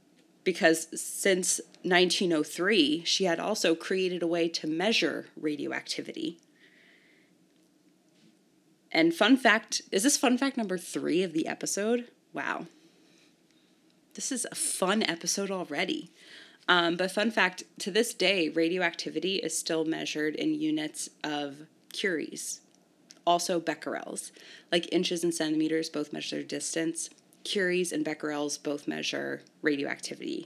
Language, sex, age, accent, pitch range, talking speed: English, female, 20-39, American, 155-210 Hz, 120 wpm